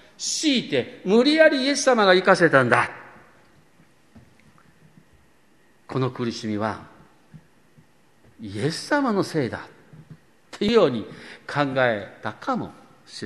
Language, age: Japanese, 50-69